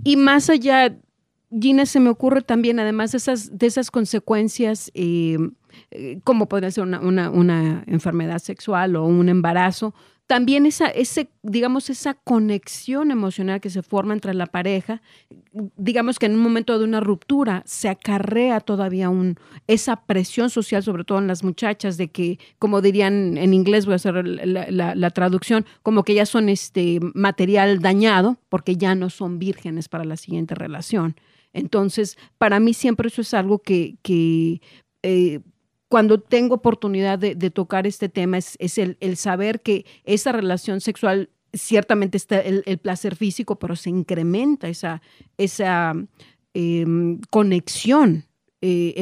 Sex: female